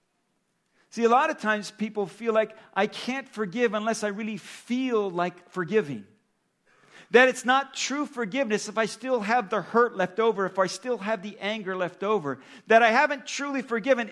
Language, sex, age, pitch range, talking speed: English, male, 50-69, 180-235 Hz, 185 wpm